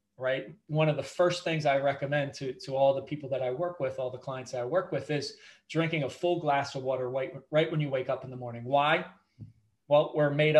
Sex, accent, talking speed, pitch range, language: male, American, 250 wpm, 135-165 Hz, English